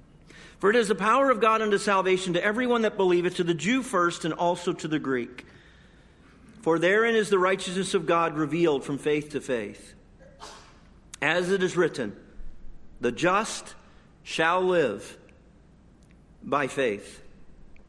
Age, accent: 50-69, American